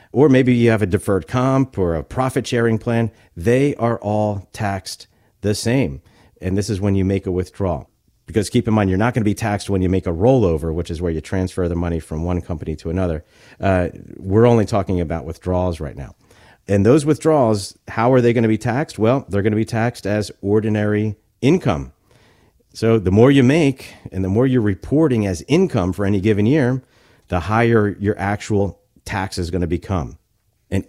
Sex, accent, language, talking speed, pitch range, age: male, American, English, 205 wpm, 95-120 Hz, 50-69